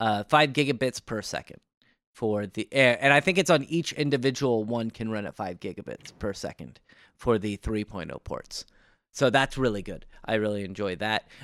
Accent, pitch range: American, 115-165 Hz